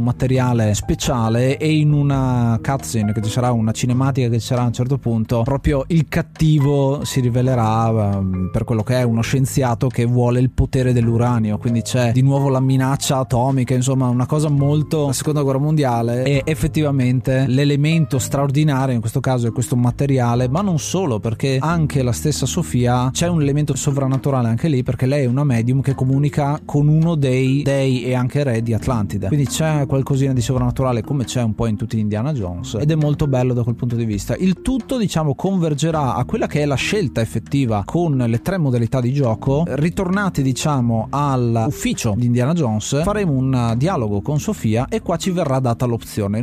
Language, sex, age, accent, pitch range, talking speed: Italian, male, 30-49, native, 120-150 Hz, 190 wpm